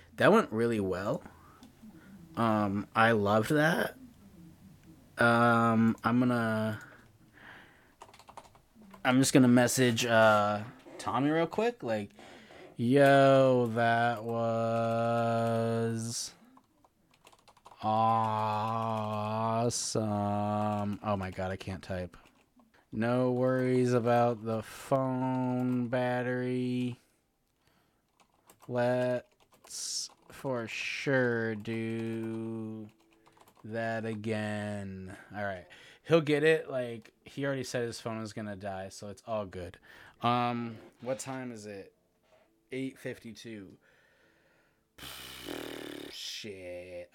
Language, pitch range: English, 105-125 Hz